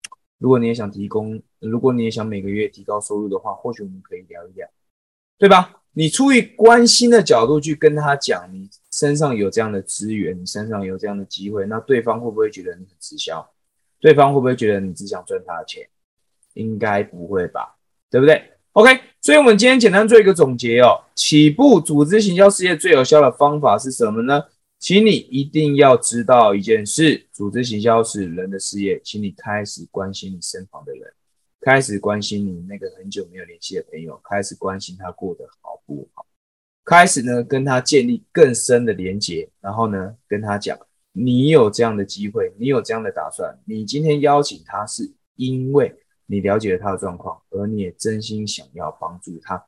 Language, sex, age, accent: Chinese, male, 20-39, native